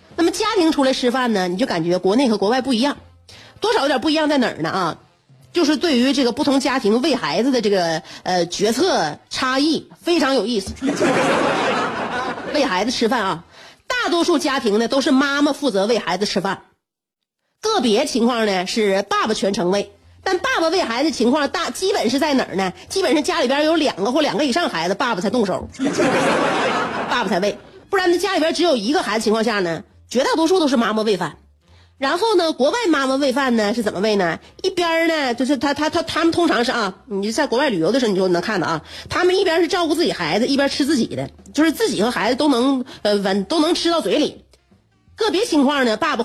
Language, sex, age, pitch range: Chinese, female, 30-49, 205-315 Hz